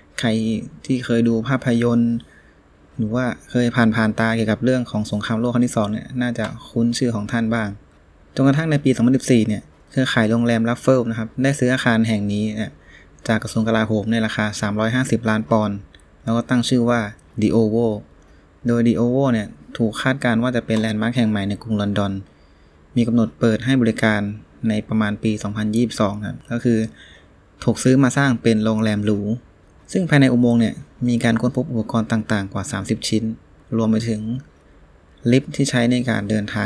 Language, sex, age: Thai, male, 20-39